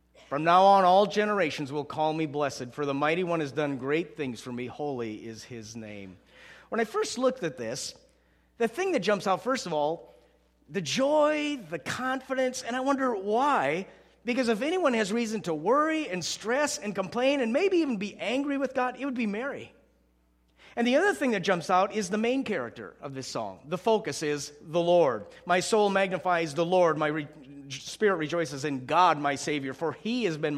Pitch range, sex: 145-215 Hz, male